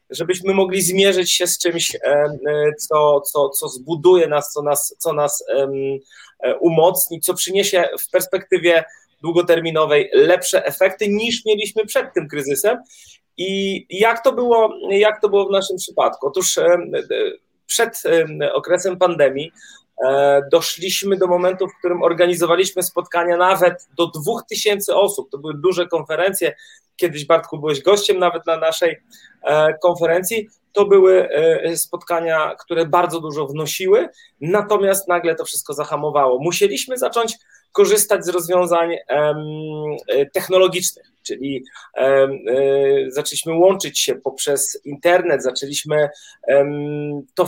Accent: native